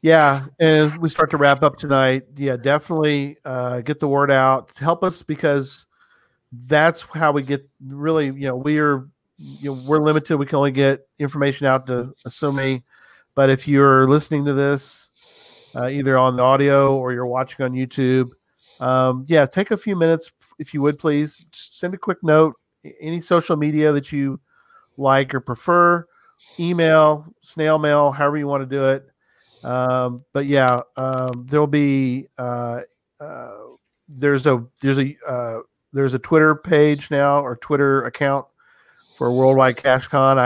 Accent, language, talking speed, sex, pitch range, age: American, English, 165 wpm, male, 130-150 Hz, 40-59